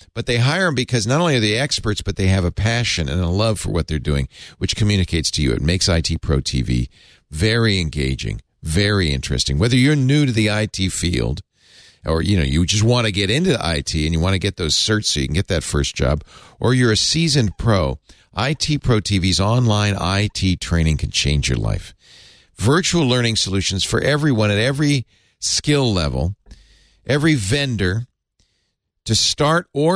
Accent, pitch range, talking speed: American, 90-115 Hz, 190 wpm